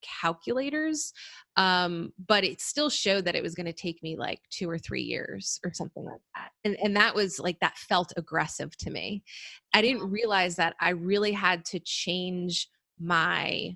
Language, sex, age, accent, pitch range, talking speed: English, female, 20-39, American, 165-195 Hz, 185 wpm